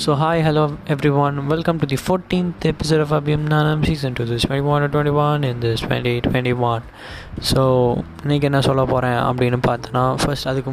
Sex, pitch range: male, 120-135 Hz